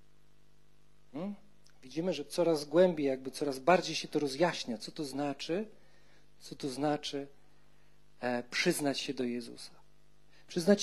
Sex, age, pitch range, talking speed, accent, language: male, 40-59, 145-185 Hz, 125 wpm, native, Polish